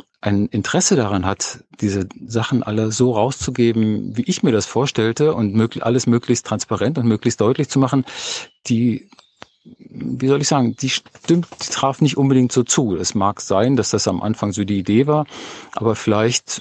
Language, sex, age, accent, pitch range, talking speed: German, male, 50-69, German, 100-125 Hz, 180 wpm